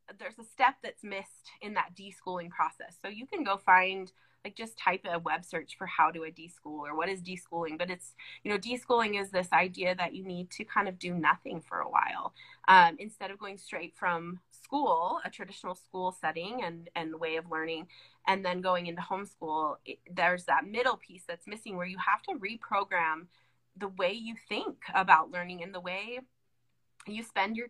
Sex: female